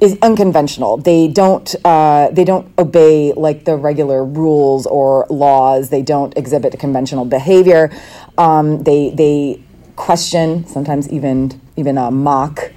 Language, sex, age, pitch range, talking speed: English, female, 30-49, 135-165 Hz, 130 wpm